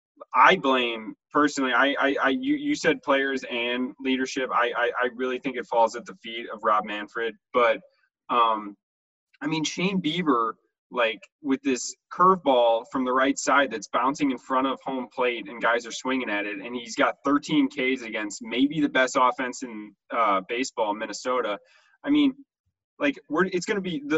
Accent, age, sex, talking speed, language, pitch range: American, 20-39, male, 190 wpm, English, 120-150 Hz